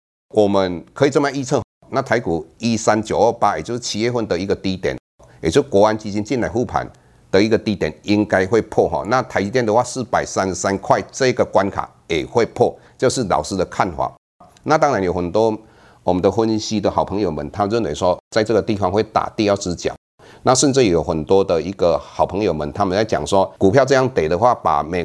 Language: Chinese